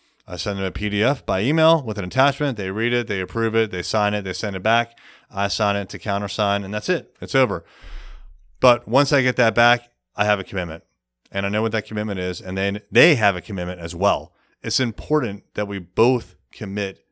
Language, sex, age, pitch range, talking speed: English, male, 30-49, 95-120 Hz, 225 wpm